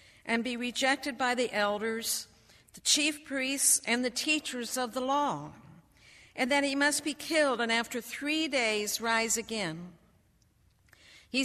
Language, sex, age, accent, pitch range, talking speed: English, female, 60-79, American, 190-260 Hz, 145 wpm